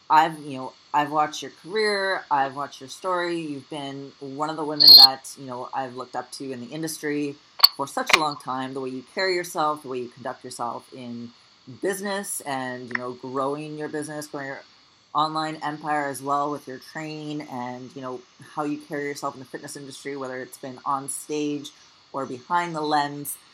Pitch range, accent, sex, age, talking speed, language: 140-175 Hz, American, female, 30-49, 200 wpm, English